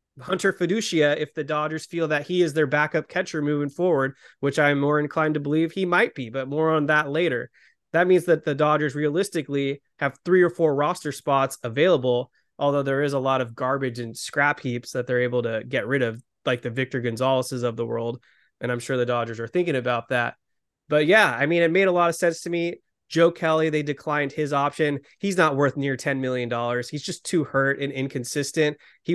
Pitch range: 130-155 Hz